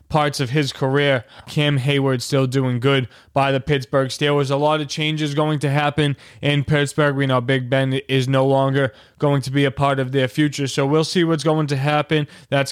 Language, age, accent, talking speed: English, 20-39, American, 210 wpm